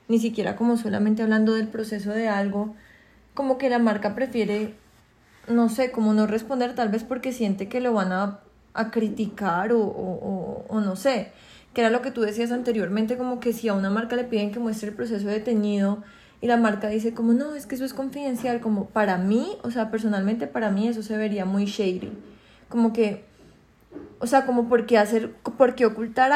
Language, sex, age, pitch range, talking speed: Spanish, female, 20-39, 215-250 Hz, 200 wpm